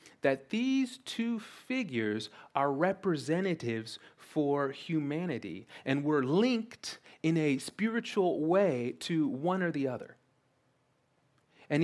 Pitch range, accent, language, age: 140-190 Hz, American, English, 30-49